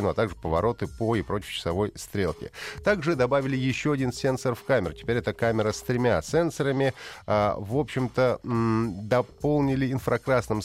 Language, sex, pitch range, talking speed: Russian, male, 95-125 Hz, 160 wpm